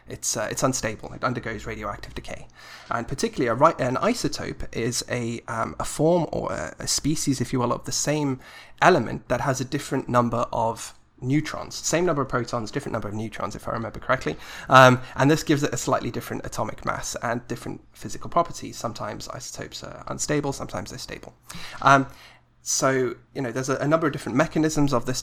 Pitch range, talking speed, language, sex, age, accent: 115-145 Hz, 190 wpm, English, male, 20-39, British